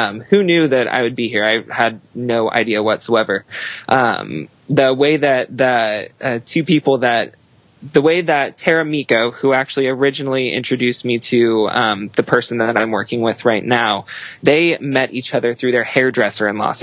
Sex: male